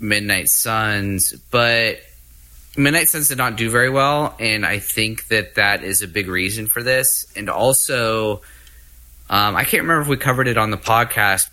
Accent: American